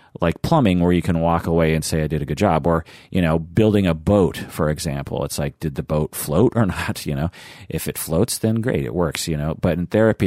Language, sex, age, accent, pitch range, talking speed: English, male, 40-59, American, 80-100 Hz, 255 wpm